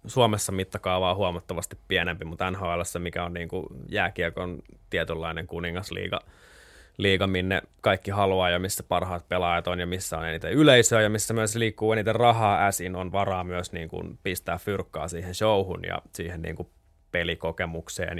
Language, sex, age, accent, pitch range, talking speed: Finnish, male, 20-39, native, 85-105 Hz, 170 wpm